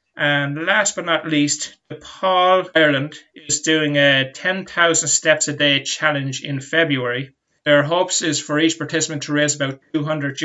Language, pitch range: English, 135-155 Hz